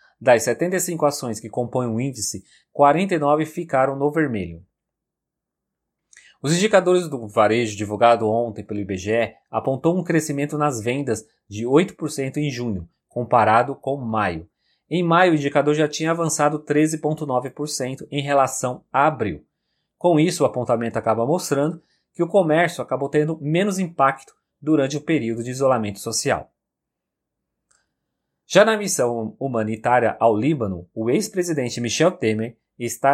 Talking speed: 130 wpm